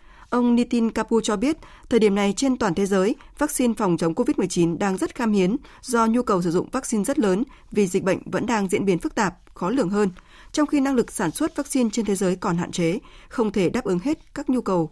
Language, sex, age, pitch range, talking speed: Vietnamese, female, 20-39, 190-250 Hz, 245 wpm